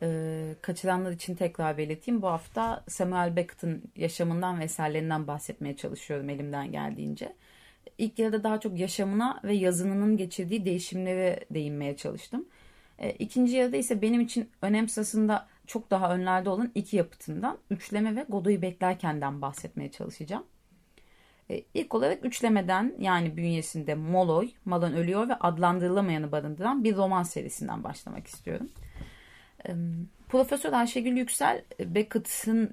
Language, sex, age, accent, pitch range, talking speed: Turkish, female, 30-49, native, 160-220 Hz, 120 wpm